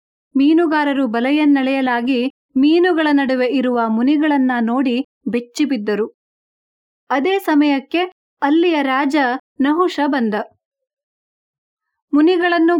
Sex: female